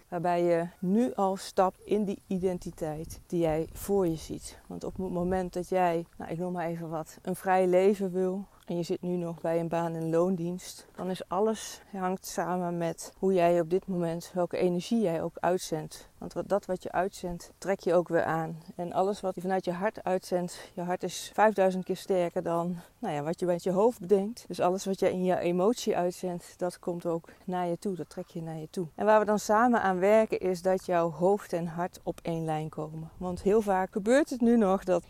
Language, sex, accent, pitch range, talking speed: Dutch, female, Dutch, 170-190 Hz, 225 wpm